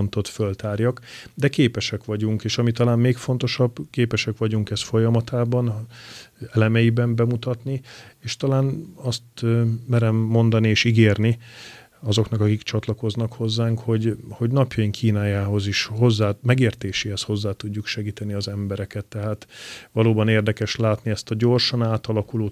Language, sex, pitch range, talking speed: Hungarian, male, 105-115 Hz, 125 wpm